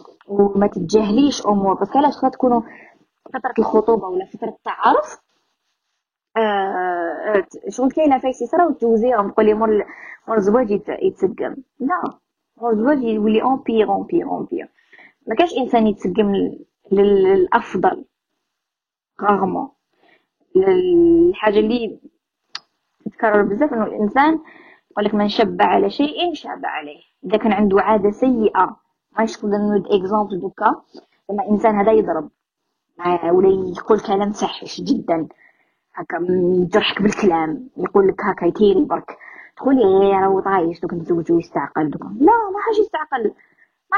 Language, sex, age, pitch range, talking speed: Arabic, female, 20-39, 205-285 Hz, 120 wpm